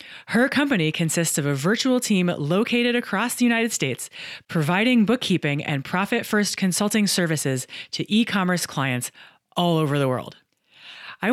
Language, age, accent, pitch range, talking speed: English, 30-49, American, 165-225 Hz, 140 wpm